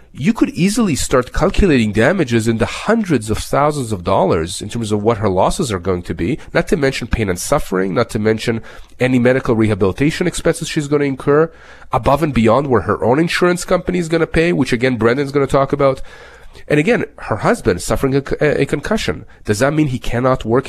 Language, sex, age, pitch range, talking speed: English, male, 40-59, 115-160 Hz, 215 wpm